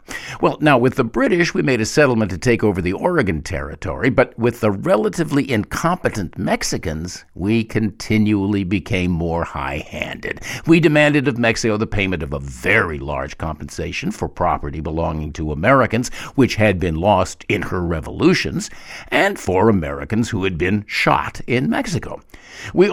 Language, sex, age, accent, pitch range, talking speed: English, male, 60-79, American, 95-140 Hz, 155 wpm